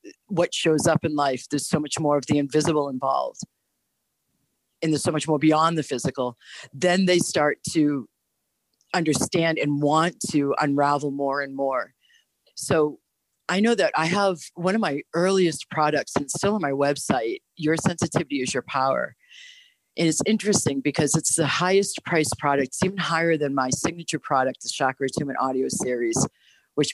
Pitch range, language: 140-170 Hz, English